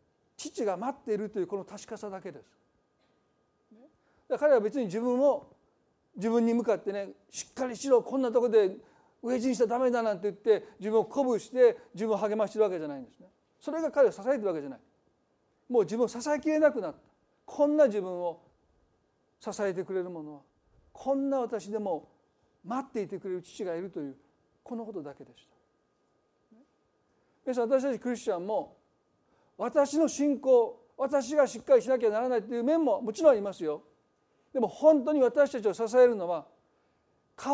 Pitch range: 195-275 Hz